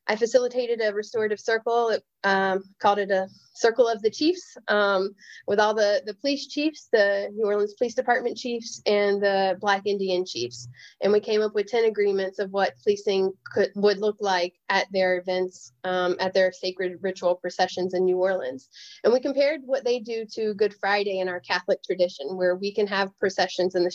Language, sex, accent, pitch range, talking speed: English, female, American, 180-205 Hz, 190 wpm